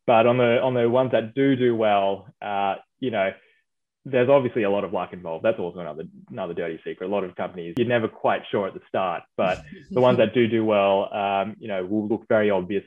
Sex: male